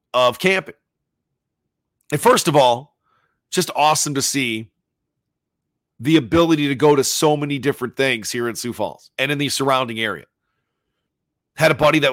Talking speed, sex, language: 160 wpm, male, English